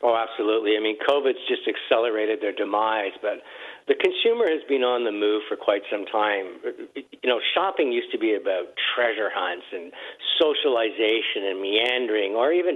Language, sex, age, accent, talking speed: English, male, 50-69, American, 170 wpm